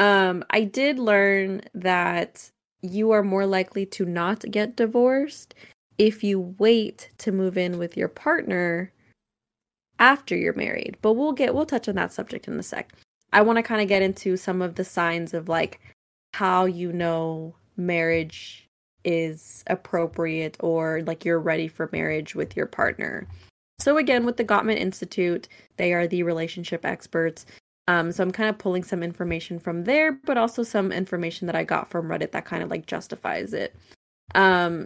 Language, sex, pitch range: English, female, 170-215 Hz